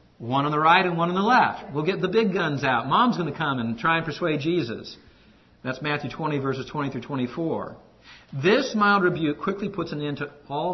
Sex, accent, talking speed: male, American, 225 wpm